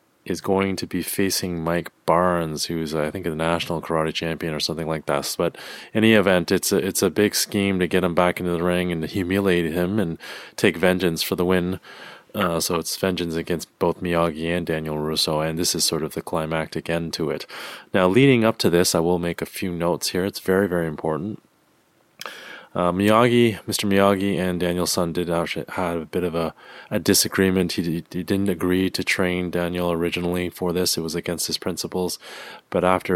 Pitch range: 85-95 Hz